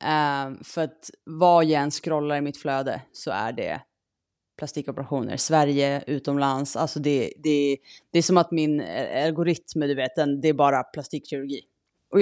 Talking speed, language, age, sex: 155 wpm, Swedish, 30-49, female